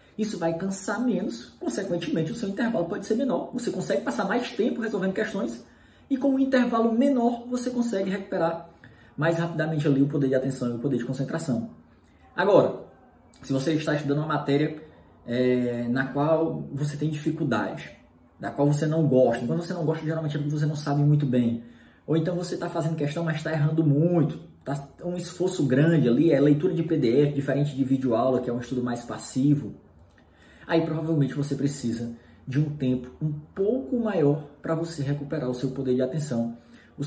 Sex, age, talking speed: male, 20-39, 185 wpm